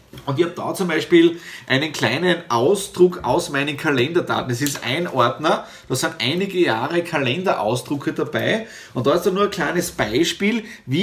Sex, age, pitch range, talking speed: male, 30-49, 130-180 Hz, 170 wpm